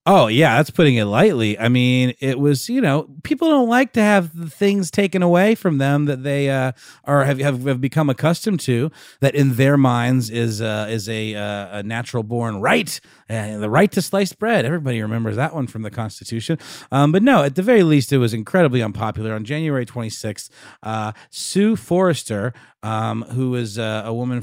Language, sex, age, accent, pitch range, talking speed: English, male, 30-49, American, 110-170 Hz, 200 wpm